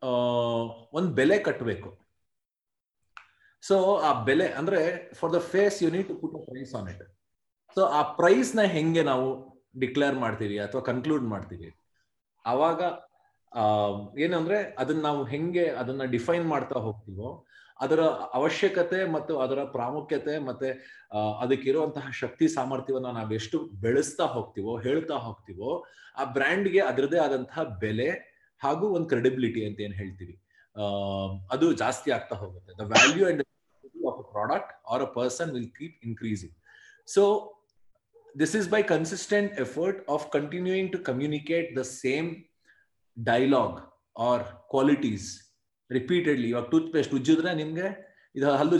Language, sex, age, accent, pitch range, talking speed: Kannada, male, 30-49, native, 115-165 Hz, 120 wpm